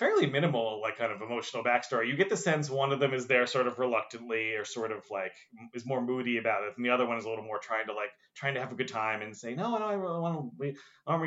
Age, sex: 30-49, male